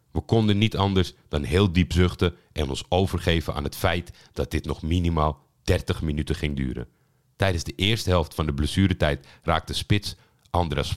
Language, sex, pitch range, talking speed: Dutch, male, 80-105 Hz, 175 wpm